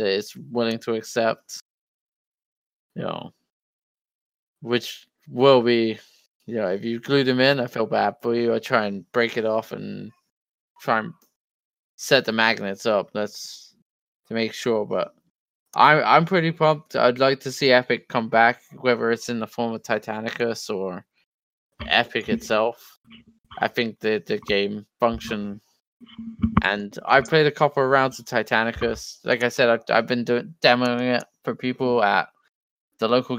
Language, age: English, 20-39